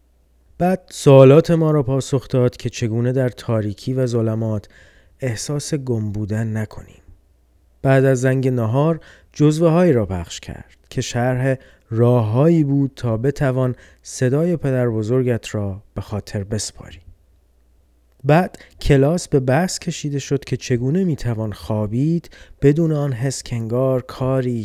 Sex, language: male, Persian